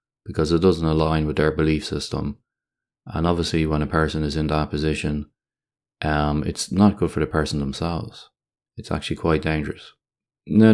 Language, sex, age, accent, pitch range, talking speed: English, male, 20-39, Irish, 75-85 Hz, 170 wpm